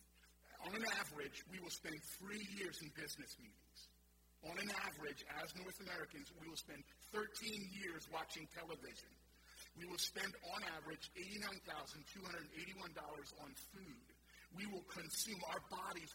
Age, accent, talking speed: 40-59, American, 140 wpm